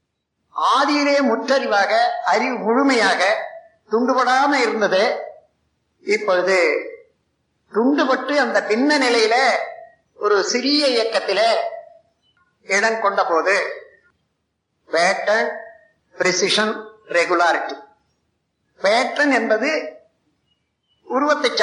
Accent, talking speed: native, 35 wpm